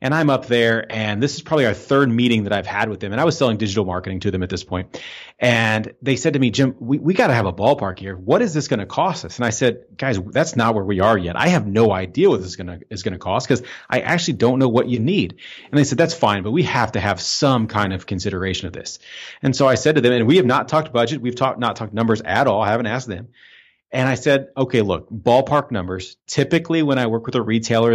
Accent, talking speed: American, 285 wpm